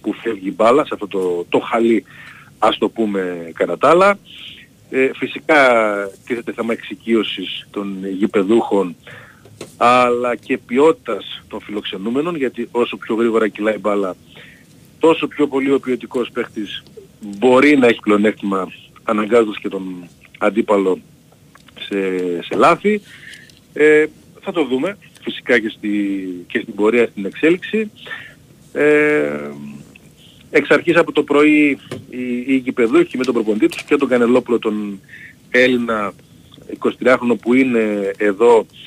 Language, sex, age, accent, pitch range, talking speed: Greek, male, 40-59, native, 105-135 Hz, 120 wpm